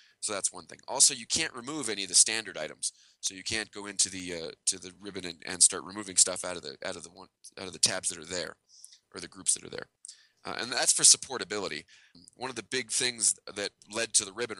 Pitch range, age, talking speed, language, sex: 90-110 Hz, 20-39, 260 wpm, English, male